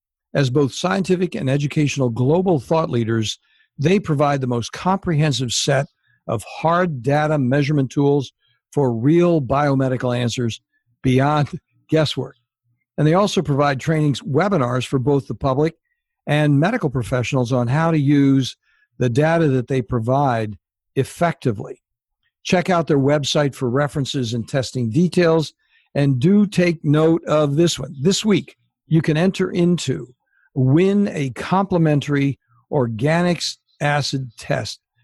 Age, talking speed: 60-79, 130 wpm